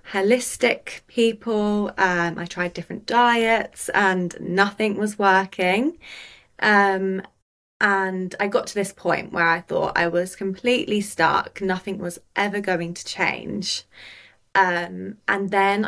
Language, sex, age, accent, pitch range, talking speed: English, female, 20-39, British, 175-205 Hz, 130 wpm